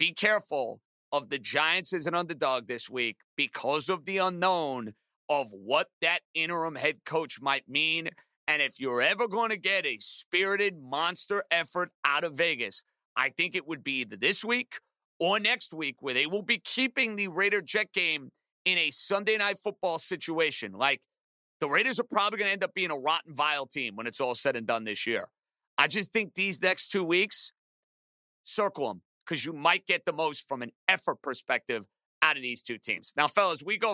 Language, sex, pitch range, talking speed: English, male, 145-190 Hz, 195 wpm